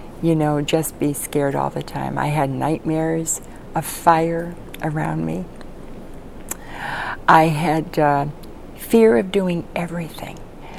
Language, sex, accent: English, female, American